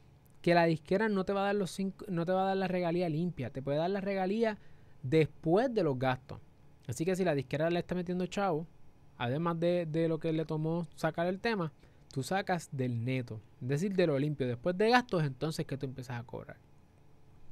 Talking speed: 220 wpm